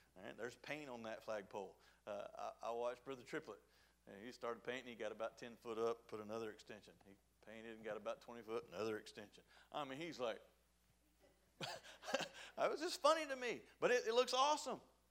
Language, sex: English, male